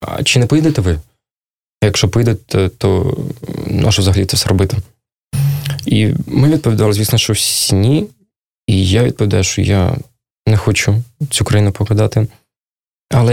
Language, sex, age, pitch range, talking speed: Russian, male, 20-39, 105-130 Hz, 145 wpm